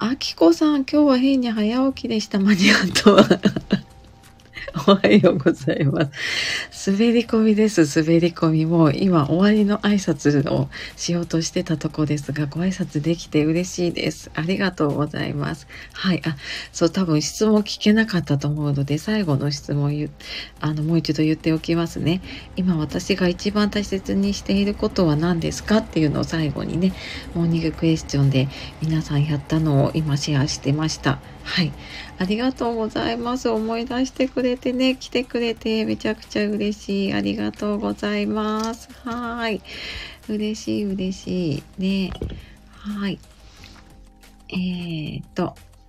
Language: Japanese